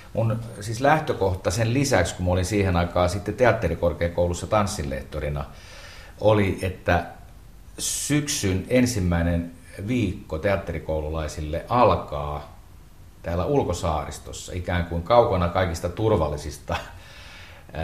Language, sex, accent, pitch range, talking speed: Finnish, male, native, 85-105 Hz, 90 wpm